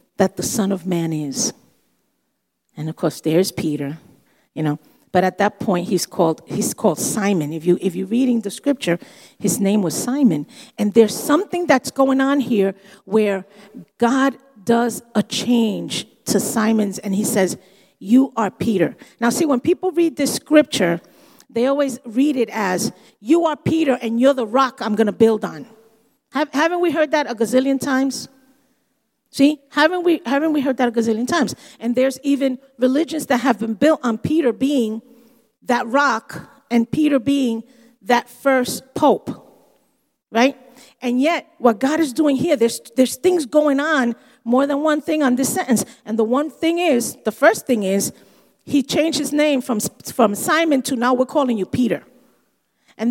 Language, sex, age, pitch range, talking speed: English, female, 50-69, 220-285 Hz, 175 wpm